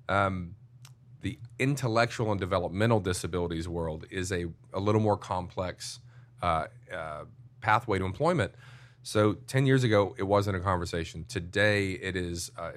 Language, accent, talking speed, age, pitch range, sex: English, American, 140 wpm, 30-49, 95-120 Hz, male